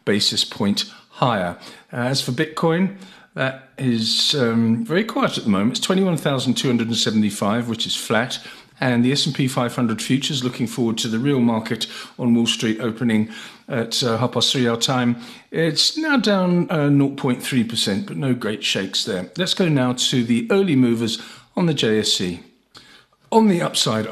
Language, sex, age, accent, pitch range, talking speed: English, male, 50-69, British, 120-160 Hz, 160 wpm